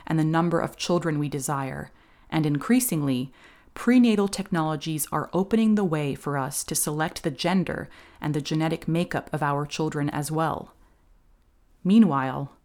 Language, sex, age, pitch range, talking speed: English, female, 30-49, 145-175 Hz, 145 wpm